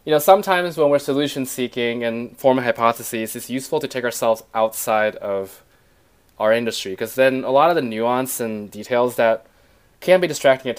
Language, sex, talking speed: English, male, 185 wpm